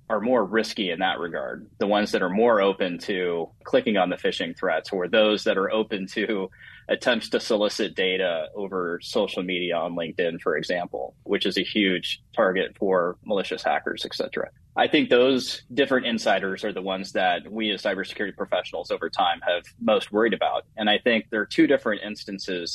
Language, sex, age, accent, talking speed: English, male, 20-39, American, 190 wpm